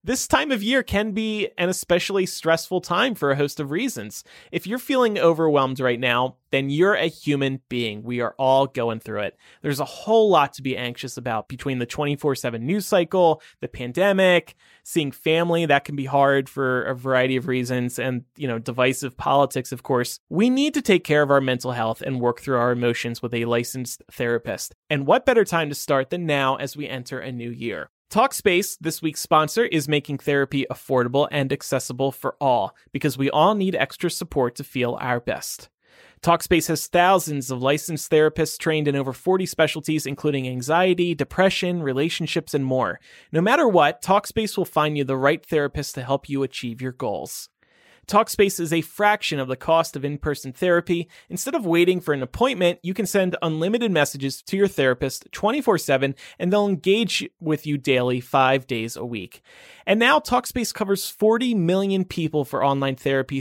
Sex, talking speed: male, 185 wpm